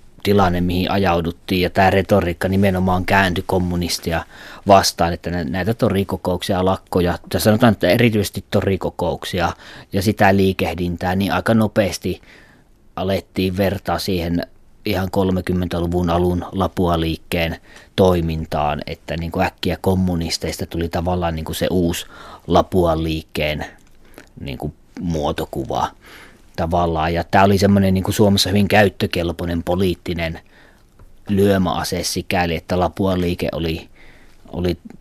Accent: native